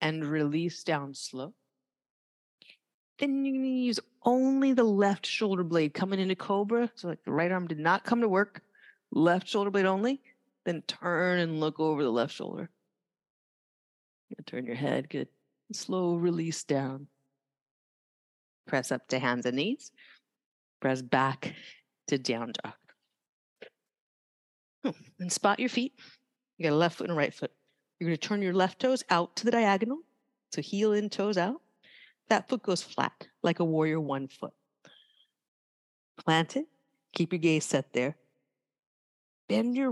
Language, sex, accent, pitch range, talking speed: English, female, American, 155-210 Hz, 155 wpm